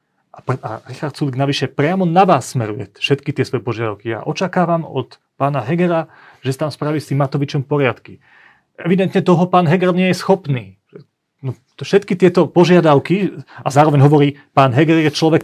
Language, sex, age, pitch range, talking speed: Slovak, male, 30-49, 115-150 Hz, 170 wpm